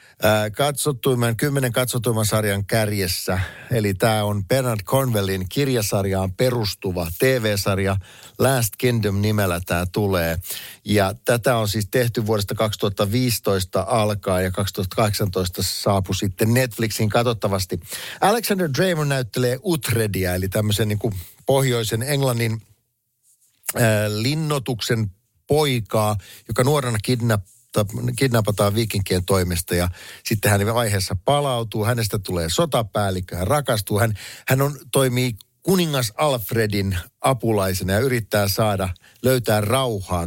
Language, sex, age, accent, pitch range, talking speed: Finnish, male, 50-69, native, 95-120 Hz, 110 wpm